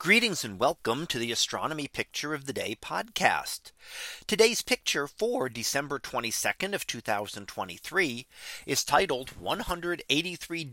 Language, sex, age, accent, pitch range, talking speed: English, male, 40-59, American, 130-200 Hz, 115 wpm